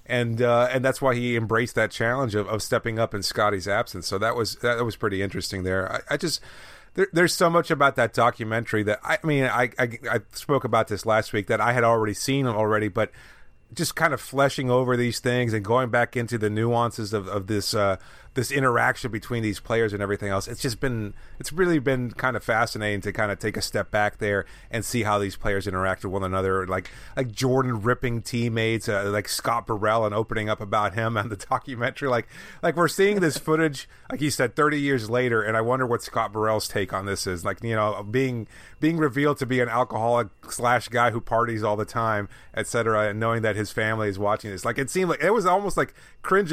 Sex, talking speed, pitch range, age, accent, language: male, 230 wpm, 105-130 Hz, 30-49, American, English